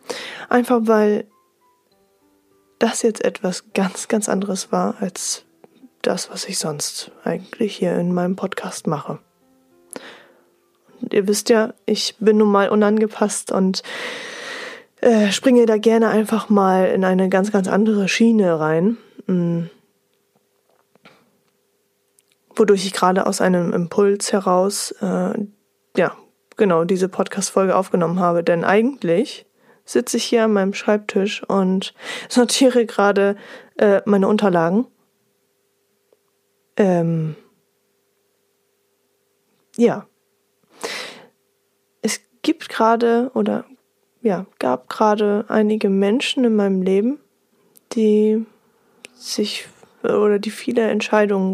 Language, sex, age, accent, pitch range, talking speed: German, female, 20-39, German, 190-225 Hz, 105 wpm